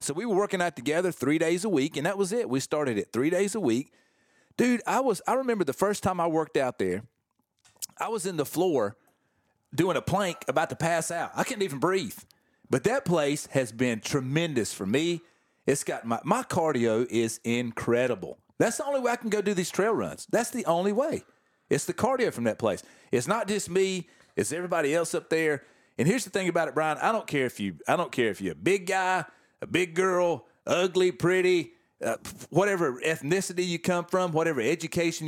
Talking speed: 215 wpm